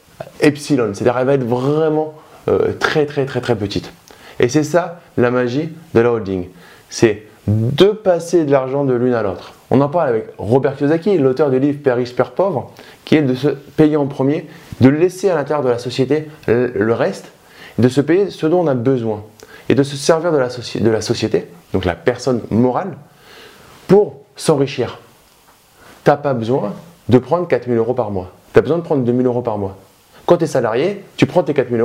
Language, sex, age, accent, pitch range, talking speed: French, male, 20-39, French, 120-160 Hz, 210 wpm